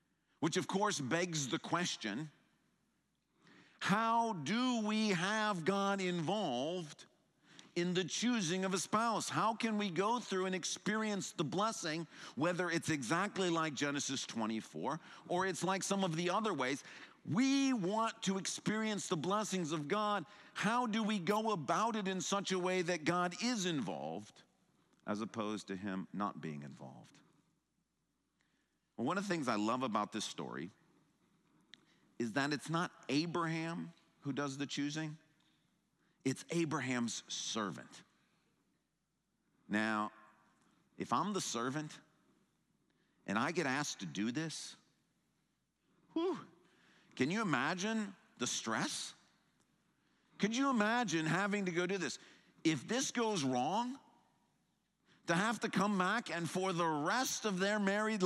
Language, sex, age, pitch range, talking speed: English, male, 50-69, 160-210 Hz, 135 wpm